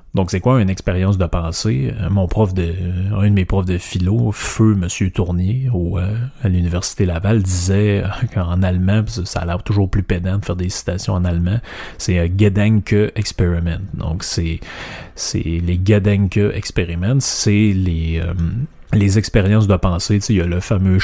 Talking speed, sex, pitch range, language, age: 185 wpm, male, 90-105 Hz, French, 30-49